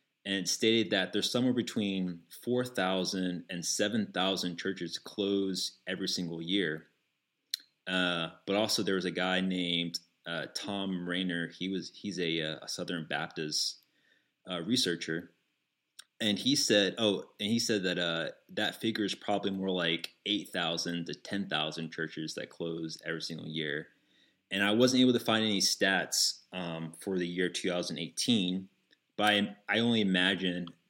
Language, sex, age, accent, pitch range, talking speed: English, male, 30-49, American, 85-105 Hz, 145 wpm